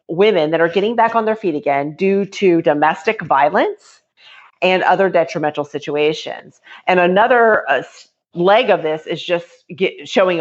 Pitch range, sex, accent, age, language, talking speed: 165-210 Hz, female, American, 40-59, English, 155 wpm